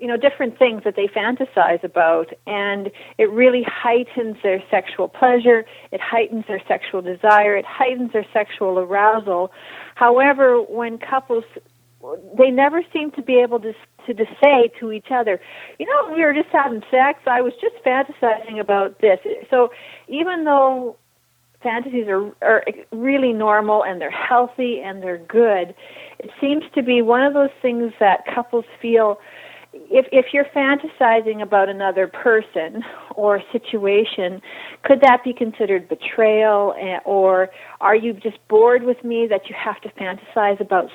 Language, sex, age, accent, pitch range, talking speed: English, female, 40-59, American, 210-270 Hz, 155 wpm